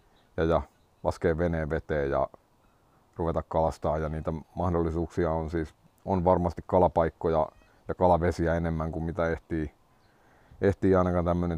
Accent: native